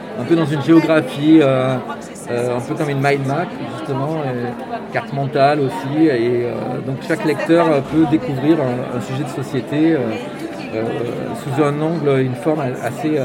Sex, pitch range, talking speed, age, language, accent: male, 135-170 Hz, 170 wpm, 40-59, French, French